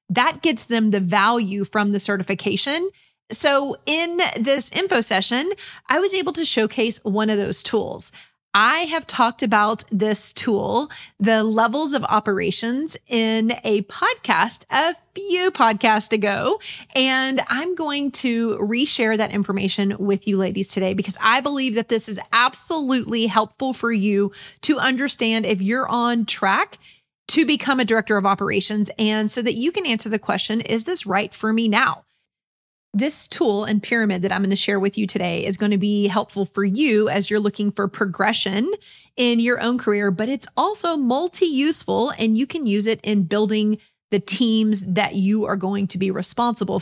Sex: female